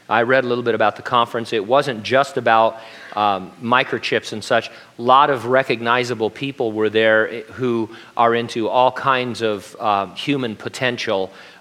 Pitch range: 110-135 Hz